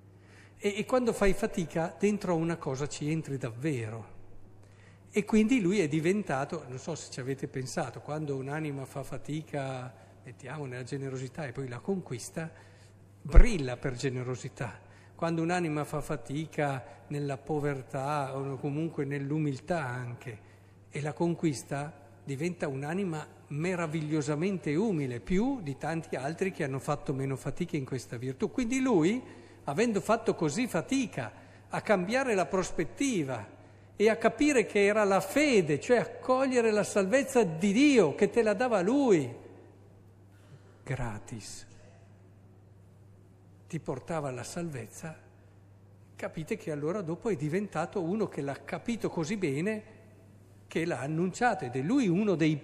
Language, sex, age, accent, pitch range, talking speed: Italian, male, 50-69, native, 125-185 Hz, 135 wpm